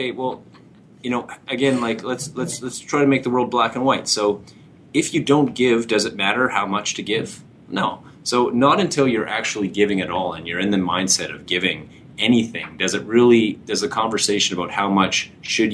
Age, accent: 30-49, American